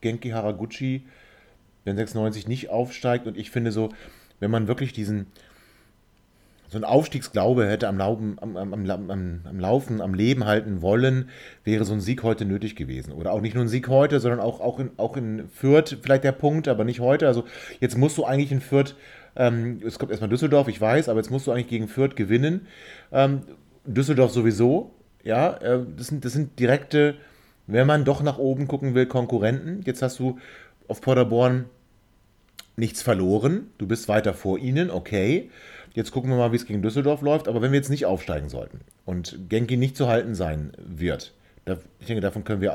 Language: German